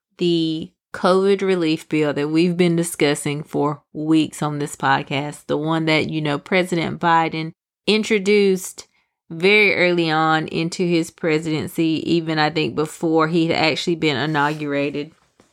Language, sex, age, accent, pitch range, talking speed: English, female, 30-49, American, 155-210 Hz, 140 wpm